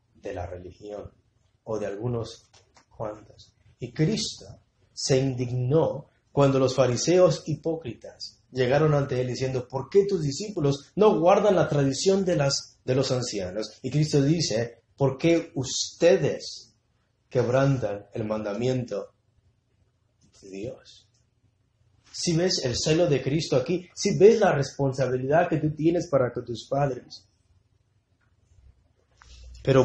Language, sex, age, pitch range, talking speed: English, male, 30-49, 115-175 Hz, 125 wpm